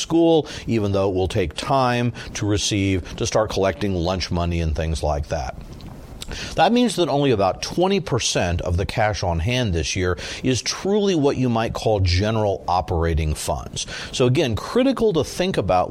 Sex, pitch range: male, 90-125 Hz